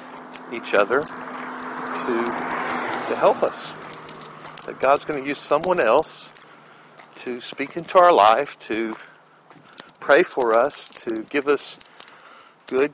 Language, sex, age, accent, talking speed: English, male, 50-69, American, 120 wpm